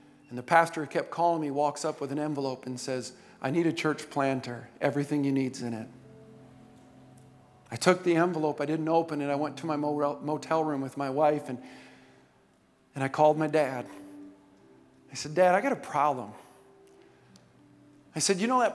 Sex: male